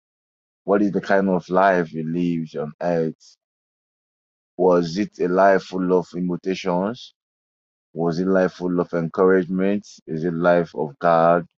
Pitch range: 80-95 Hz